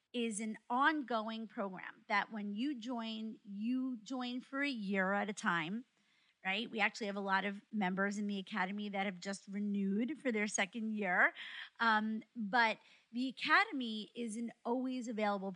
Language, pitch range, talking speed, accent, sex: English, 200-235 Hz, 165 wpm, American, female